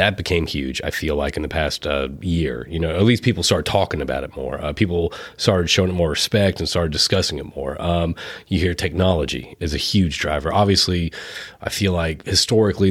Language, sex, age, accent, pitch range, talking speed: English, male, 30-49, American, 85-100 Hz, 210 wpm